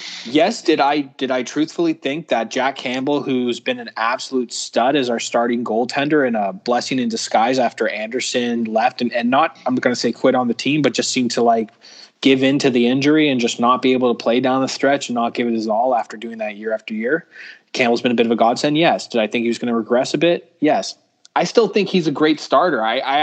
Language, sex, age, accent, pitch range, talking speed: English, male, 20-39, American, 125-160 Hz, 255 wpm